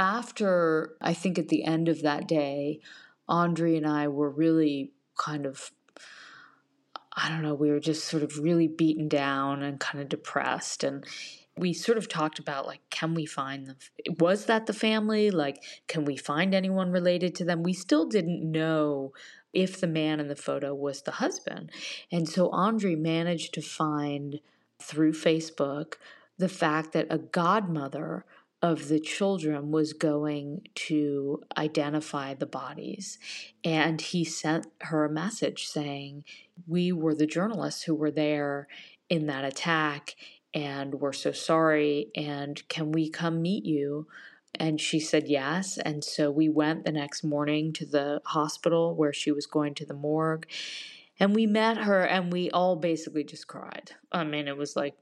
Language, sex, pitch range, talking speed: English, female, 145-170 Hz, 165 wpm